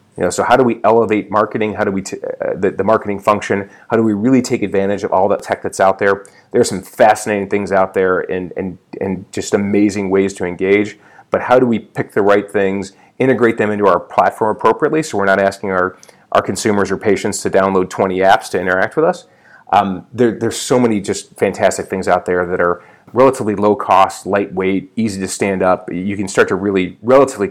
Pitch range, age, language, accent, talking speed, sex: 95-110 Hz, 30-49, English, American, 220 wpm, male